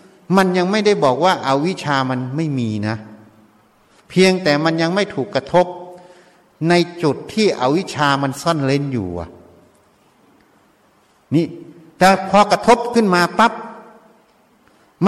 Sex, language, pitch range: male, Thai, 140-195 Hz